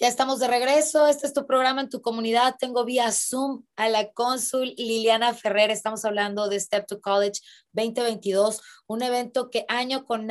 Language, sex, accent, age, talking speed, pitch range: Spanish, female, Mexican, 20-39, 180 wpm, 205-235 Hz